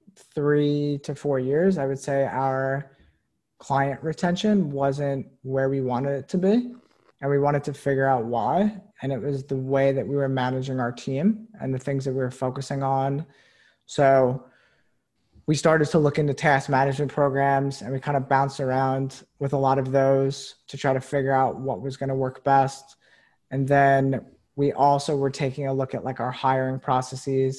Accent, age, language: American, 20-39, English